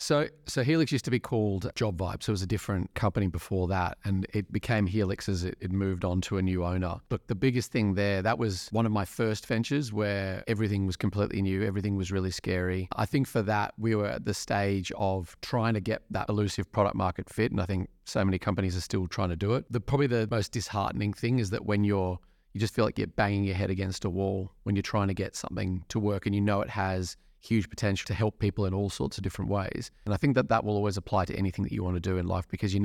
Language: English